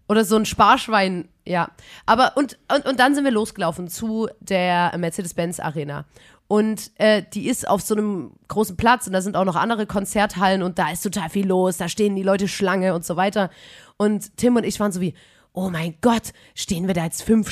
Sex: female